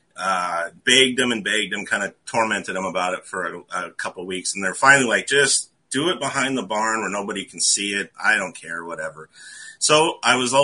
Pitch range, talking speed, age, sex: 95-125 Hz, 230 wpm, 30-49, male